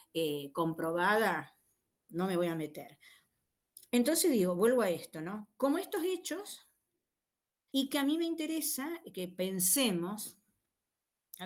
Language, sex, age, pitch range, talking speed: Spanish, female, 40-59, 175-235 Hz, 130 wpm